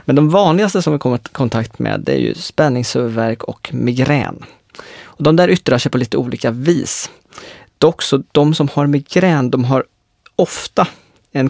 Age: 20-39